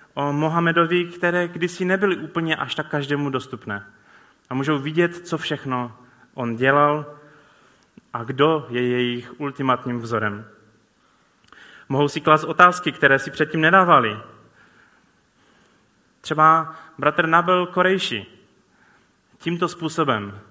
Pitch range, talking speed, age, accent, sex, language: 115-155 Hz, 110 wpm, 20-39, native, male, Czech